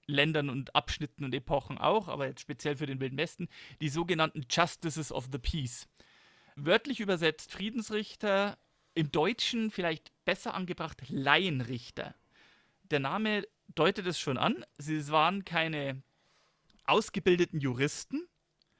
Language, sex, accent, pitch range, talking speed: German, male, German, 145-200 Hz, 120 wpm